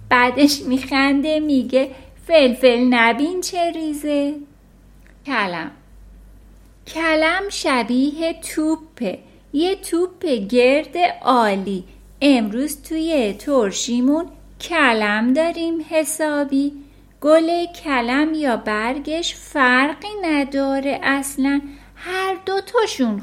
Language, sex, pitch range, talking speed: Persian, female, 235-320 Hz, 80 wpm